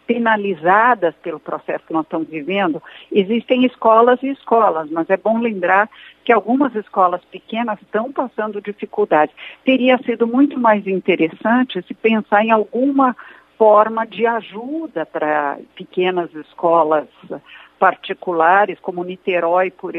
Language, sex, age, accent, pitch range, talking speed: Portuguese, female, 60-79, Brazilian, 175-230 Hz, 125 wpm